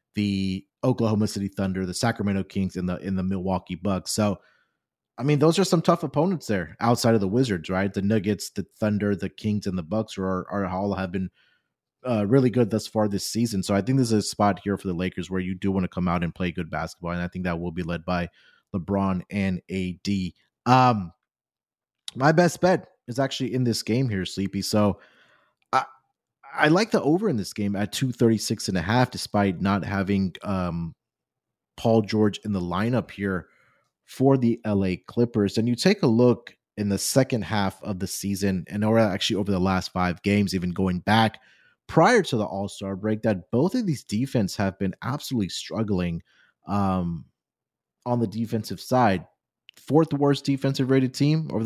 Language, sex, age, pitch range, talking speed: English, male, 30-49, 95-120 Hz, 195 wpm